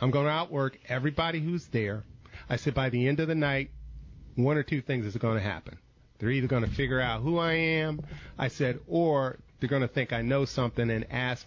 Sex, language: male, English